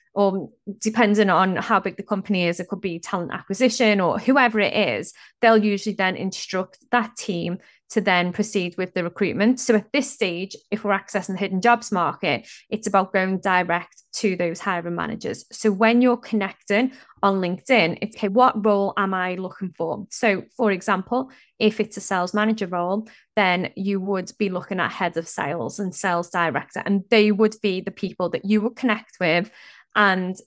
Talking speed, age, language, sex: 185 wpm, 20-39, English, female